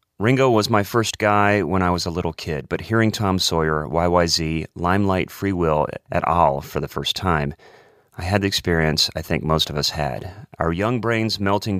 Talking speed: 200 wpm